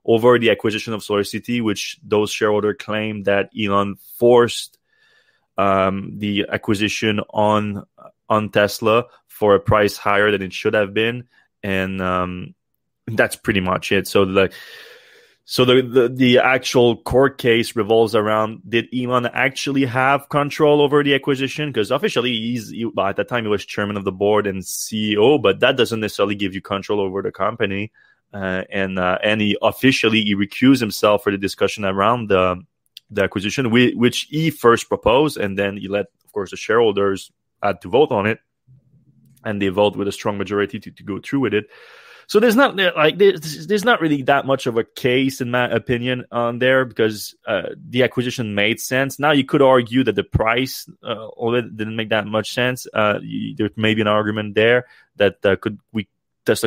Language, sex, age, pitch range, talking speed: English, male, 20-39, 100-125 Hz, 185 wpm